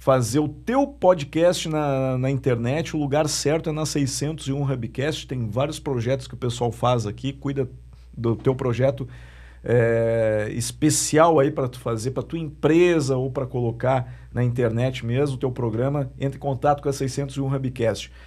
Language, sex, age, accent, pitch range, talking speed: Portuguese, male, 50-69, Brazilian, 125-160 Hz, 170 wpm